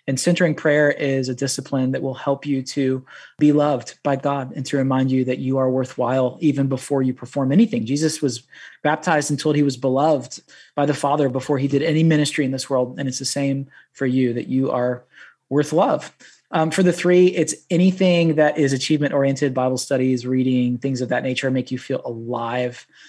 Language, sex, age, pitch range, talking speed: English, male, 20-39, 130-150 Hz, 205 wpm